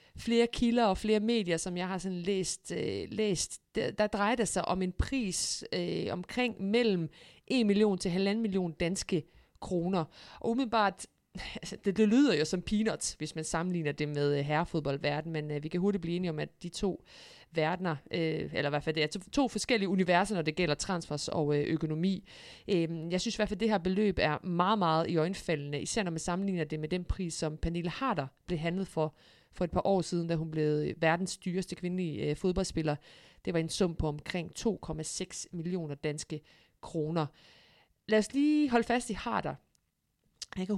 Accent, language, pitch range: native, Danish, 160-200 Hz